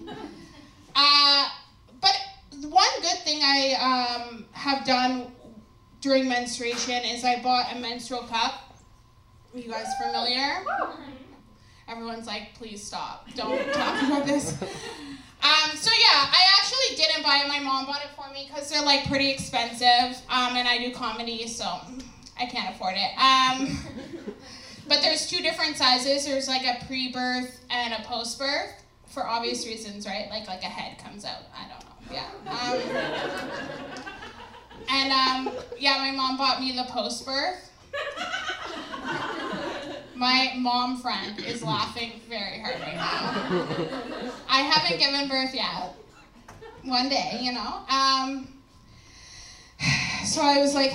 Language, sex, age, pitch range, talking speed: English, female, 20-39, 245-285 Hz, 140 wpm